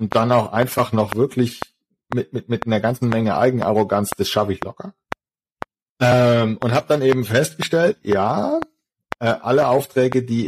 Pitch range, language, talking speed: 100-130 Hz, German, 160 wpm